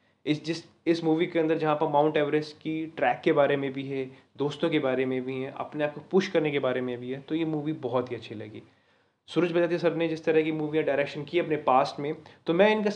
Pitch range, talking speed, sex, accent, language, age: 140-180 Hz, 260 wpm, male, native, Hindi, 20-39